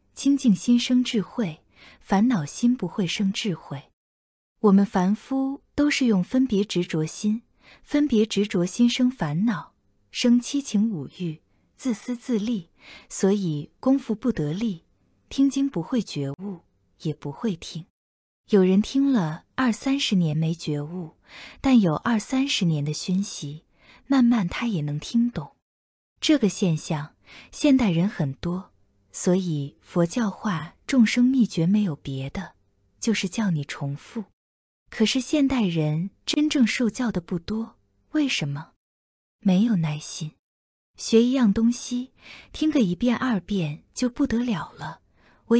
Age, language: 20-39, Chinese